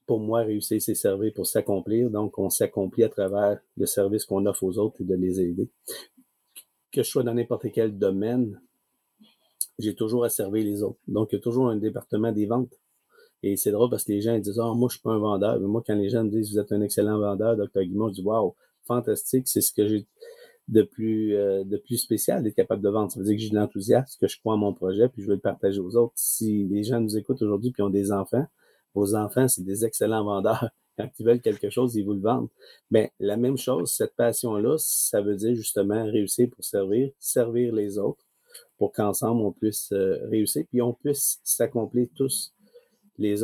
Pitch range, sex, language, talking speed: 100-120 Hz, male, French, 225 wpm